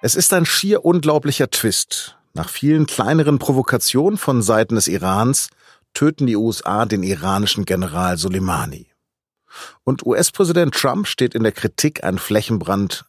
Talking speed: 140 wpm